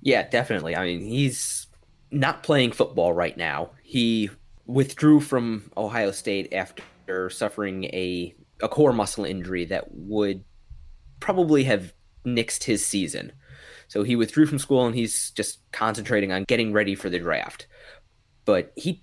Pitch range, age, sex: 95-125 Hz, 20-39, male